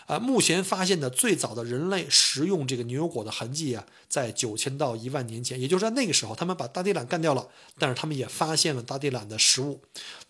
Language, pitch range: Chinese, 130-170 Hz